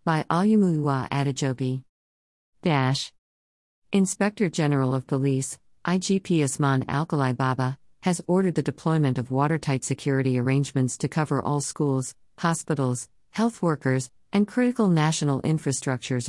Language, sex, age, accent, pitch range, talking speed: English, female, 50-69, American, 130-155 Hz, 115 wpm